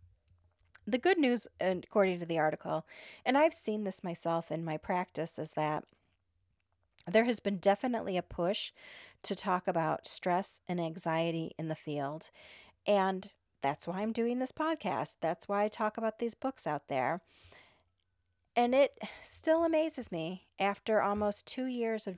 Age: 40-59